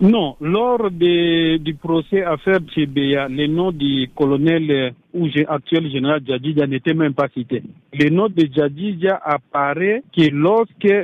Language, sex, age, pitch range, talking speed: French, male, 50-69, 140-180 Hz, 140 wpm